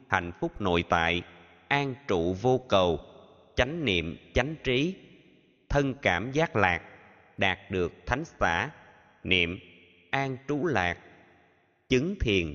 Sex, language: male, Vietnamese